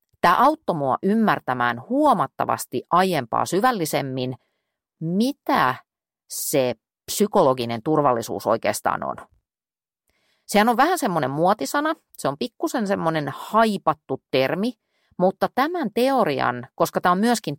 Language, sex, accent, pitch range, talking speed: Finnish, female, native, 140-225 Hz, 105 wpm